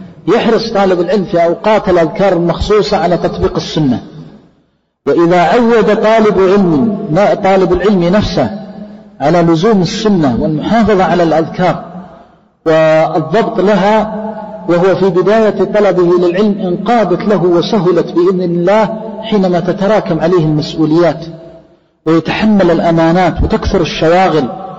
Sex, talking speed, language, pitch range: male, 105 wpm, Arabic, 165-205 Hz